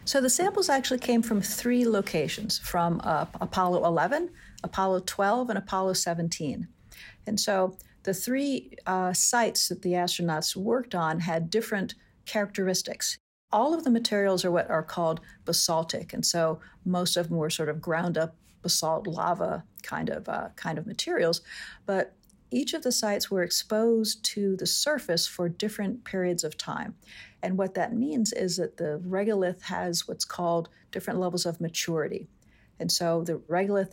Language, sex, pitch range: English, female, 170-210 Hz